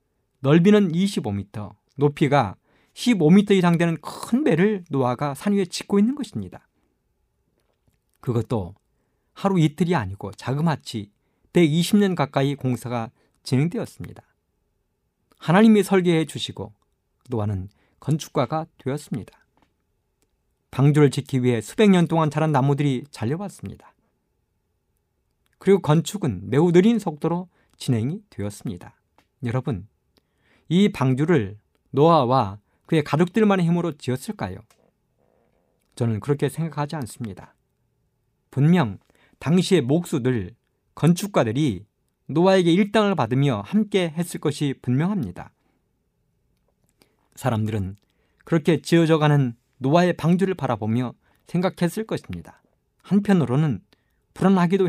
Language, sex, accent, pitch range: Korean, male, native, 120-175 Hz